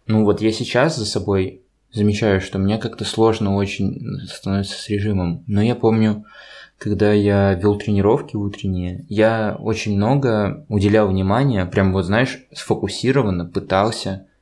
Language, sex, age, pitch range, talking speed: Russian, male, 20-39, 95-110 Hz, 135 wpm